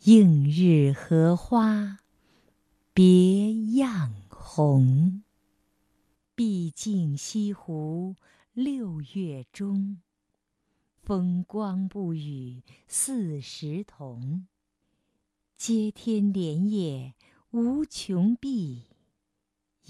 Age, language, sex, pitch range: 50-69, Chinese, female, 145-210 Hz